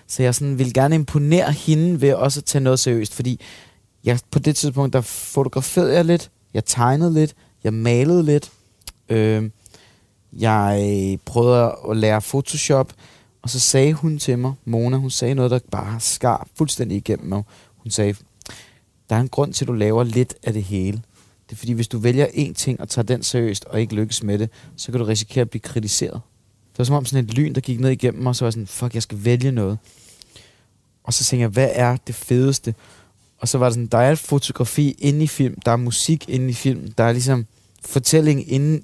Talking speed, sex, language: 215 wpm, male, Danish